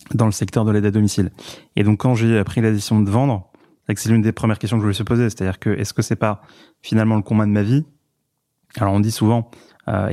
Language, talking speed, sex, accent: French, 260 wpm, male, French